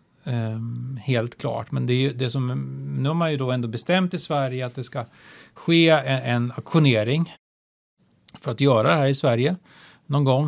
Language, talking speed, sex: Swedish, 195 wpm, male